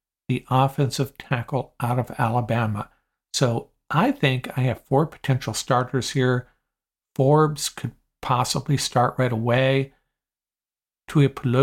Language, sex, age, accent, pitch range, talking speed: English, male, 50-69, American, 120-140 Hz, 115 wpm